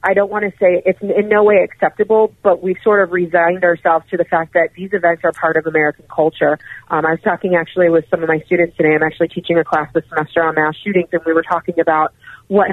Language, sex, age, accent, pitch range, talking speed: English, female, 30-49, American, 165-190 Hz, 255 wpm